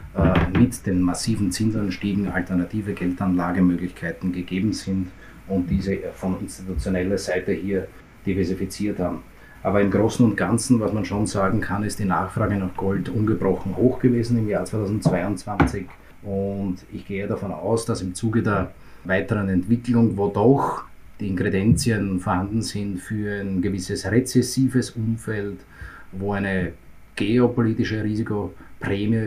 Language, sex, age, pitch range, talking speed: German, male, 30-49, 95-110 Hz, 130 wpm